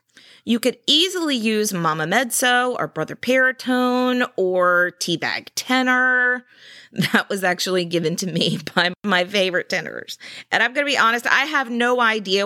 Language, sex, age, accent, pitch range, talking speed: English, female, 30-49, American, 180-250 Hz, 155 wpm